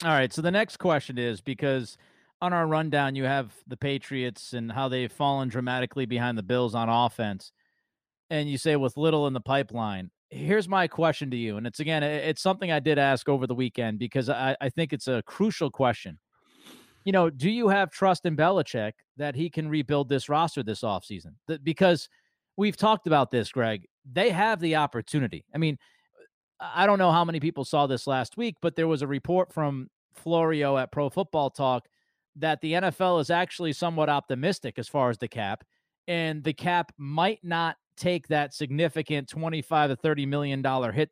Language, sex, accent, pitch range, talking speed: English, male, American, 130-170 Hz, 195 wpm